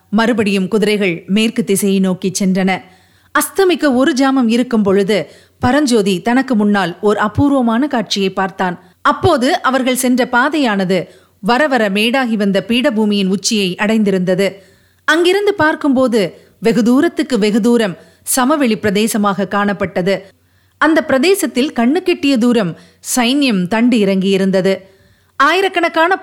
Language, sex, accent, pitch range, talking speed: Tamil, female, native, 200-270 Hz, 110 wpm